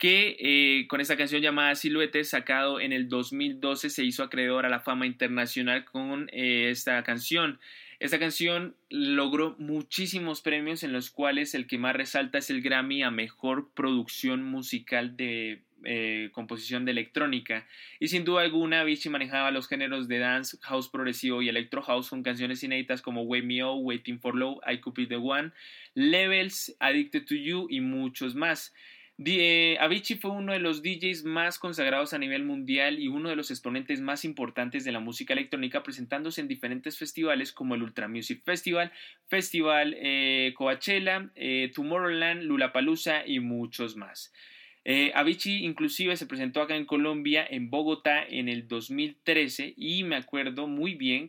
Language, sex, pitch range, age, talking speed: Spanish, male, 130-185 Hz, 20-39, 165 wpm